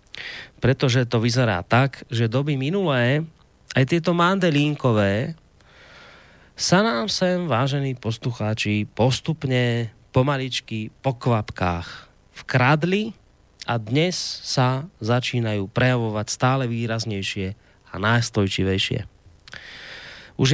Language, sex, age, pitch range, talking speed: Slovak, male, 30-49, 105-135 Hz, 90 wpm